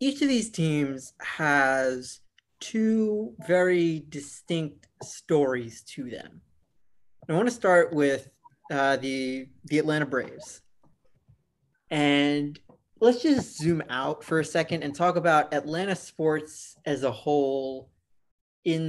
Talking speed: 120 wpm